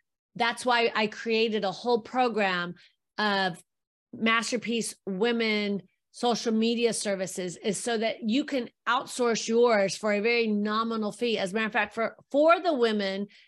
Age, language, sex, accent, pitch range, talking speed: 40-59, English, female, American, 200-245 Hz, 150 wpm